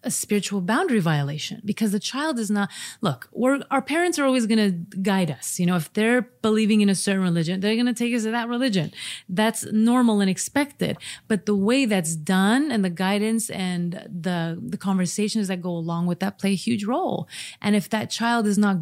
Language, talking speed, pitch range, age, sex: English, 210 wpm, 180-220 Hz, 30-49, female